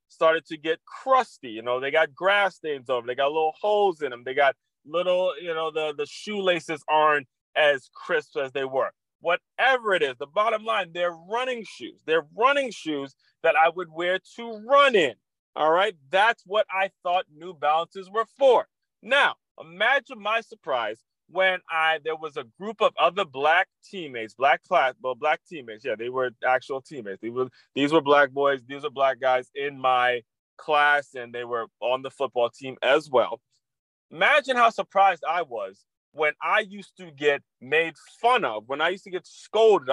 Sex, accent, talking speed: male, American, 185 wpm